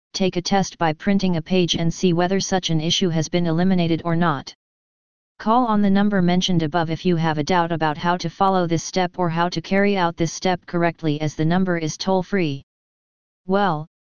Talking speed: 210 wpm